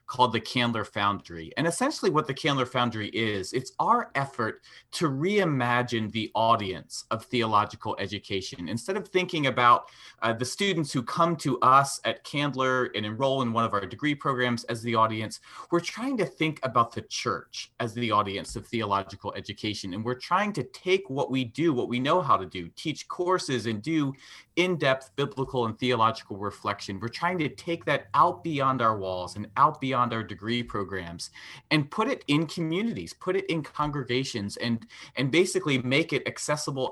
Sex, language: male, English